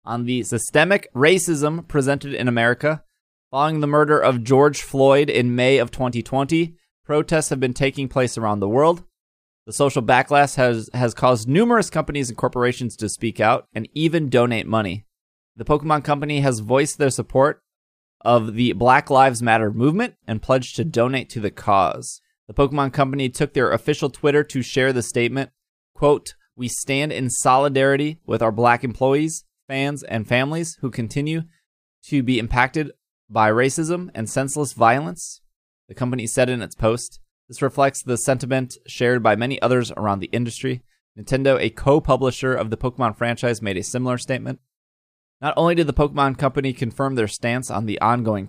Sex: male